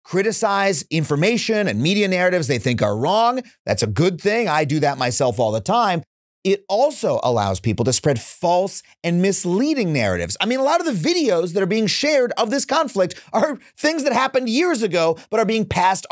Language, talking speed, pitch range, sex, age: English, 200 wpm, 150-240 Hz, male, 30-49